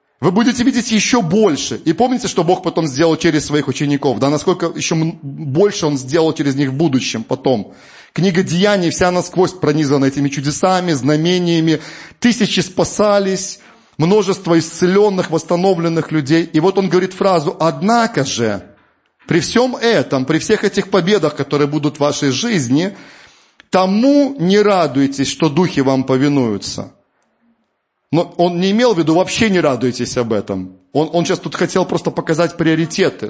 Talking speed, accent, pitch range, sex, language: 150 wpm, native, 145-190 Hz, male, Russian